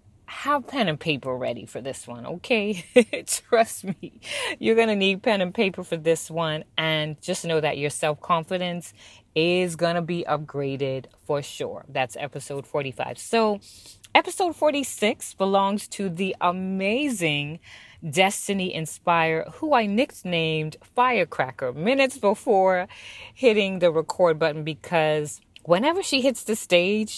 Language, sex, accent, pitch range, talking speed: English, female, American, 145-195 Hz, 130 wpm